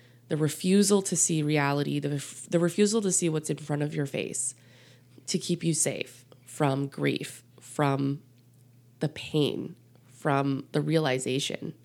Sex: female